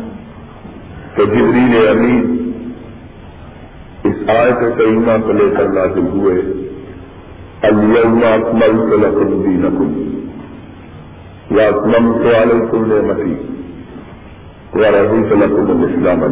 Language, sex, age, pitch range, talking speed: Urdu, male, 50-69, 95-115 Hz, 55 wpm